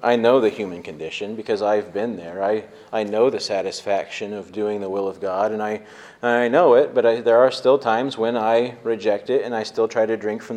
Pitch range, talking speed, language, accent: 105-135 Hz, 235 wpm, English, American